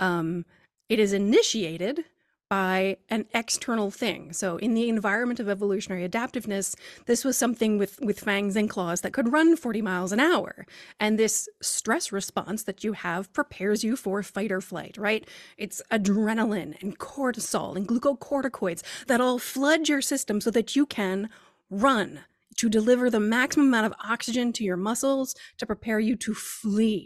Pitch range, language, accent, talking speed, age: 205-255 Hz, English, American, 165 wpm, 30-49